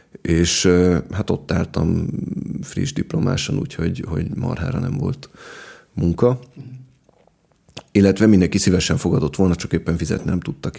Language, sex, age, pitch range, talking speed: Hungarian, male, 30-49, 85-100 Hz, 120 wpm